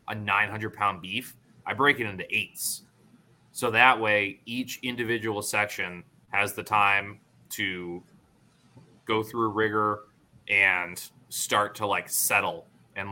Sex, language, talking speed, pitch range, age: male, English, 125 wpm, 100-125 Hz, 20-39